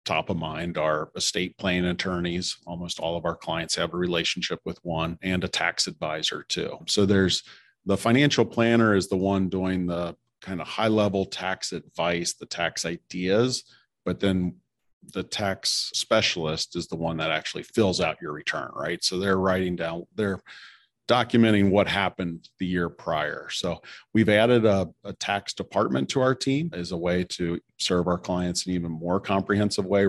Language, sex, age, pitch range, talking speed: English, male, 40-59, 85-95 Hz, 180 wpm